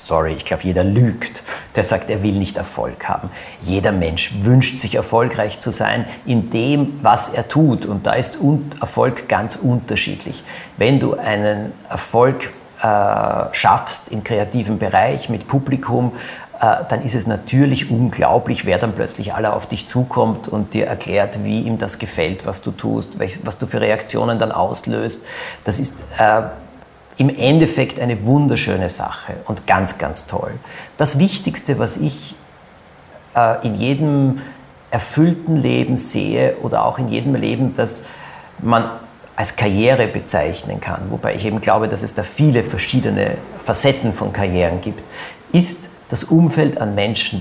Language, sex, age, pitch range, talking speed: German, male, 50-69, 105-140 Hz, 150 wpm